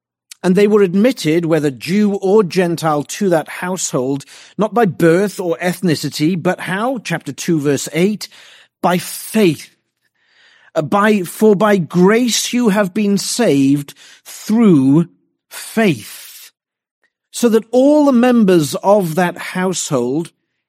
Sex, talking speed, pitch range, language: male, 120 wpm, 150-210 Hz, English